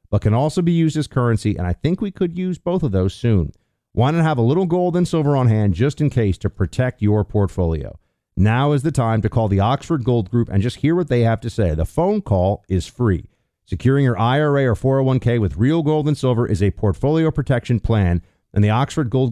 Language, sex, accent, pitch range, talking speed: English, male, American, 100-140 Hz, 235 wpm